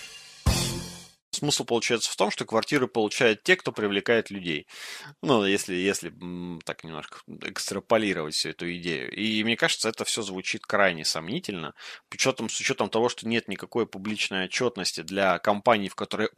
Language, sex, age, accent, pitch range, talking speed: Russian, male, 20-39, native, 90-115 Hz, 155 wpm